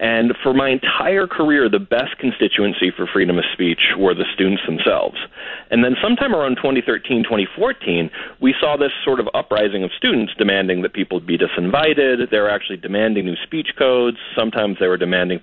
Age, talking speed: 40-59, 180 wpm